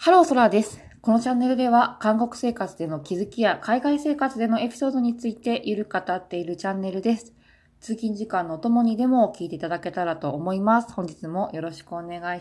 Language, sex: Japanese, female